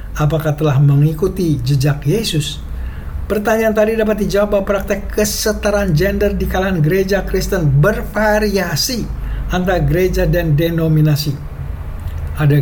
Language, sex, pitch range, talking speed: English, male, 145-200 Hz, 105 wpm